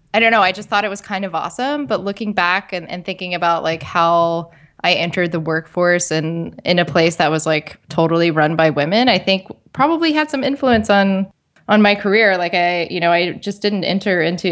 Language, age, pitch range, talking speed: English, 10-29, 160-200 Hz, 225 wpm